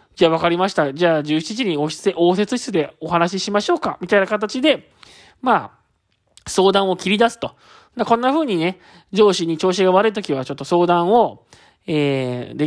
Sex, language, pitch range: male, Japanese, 170-235 Hz